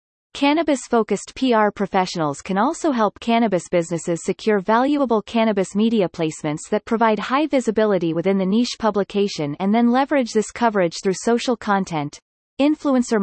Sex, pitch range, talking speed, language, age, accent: female, 180-245 Hz, 135 wpm, English, 30-49, American